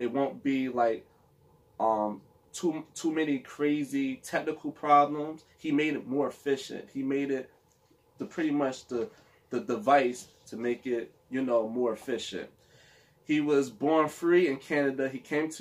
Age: 20-39